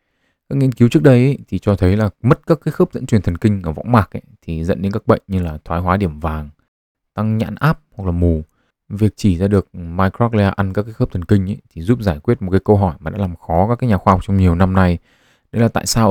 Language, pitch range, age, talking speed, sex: Vietnamese, 90-115 Hz, 20-39, 285 wpm, male